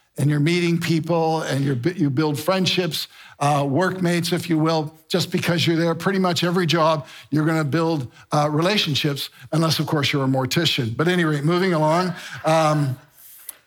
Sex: male